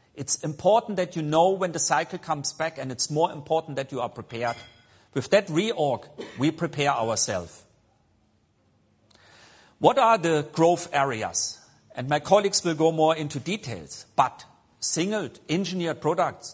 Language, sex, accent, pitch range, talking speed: English, male, German, 130-180 Hz, 150 wpm